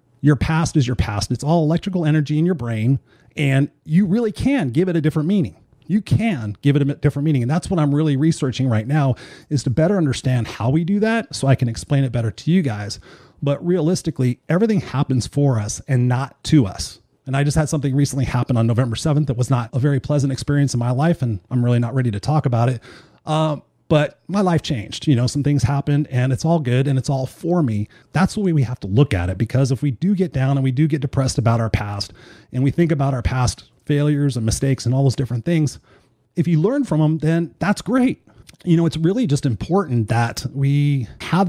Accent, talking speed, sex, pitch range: American, 240 wpm, male, 125-160 Hz